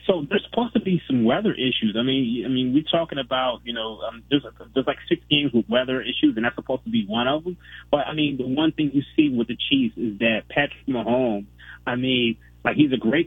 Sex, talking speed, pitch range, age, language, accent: male, 250 wpm, 115-150 Hz, 30-49, English, American